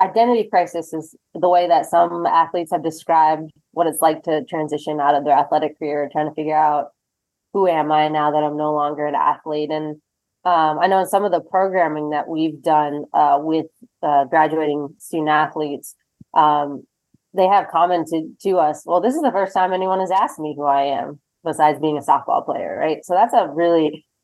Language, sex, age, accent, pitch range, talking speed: English, female, 20-39, American, 150-175 Hz, 200 wpm